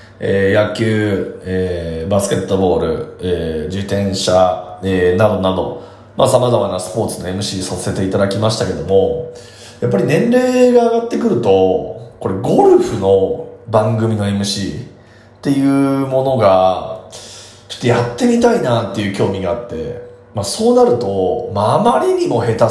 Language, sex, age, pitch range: Japanese, male, 30-49, 95-135 Hz